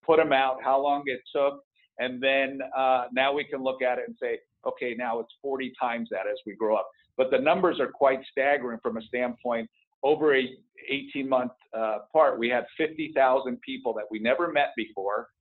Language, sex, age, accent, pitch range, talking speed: English, male, 50-69, American, 120-140 Hz, 205 wpm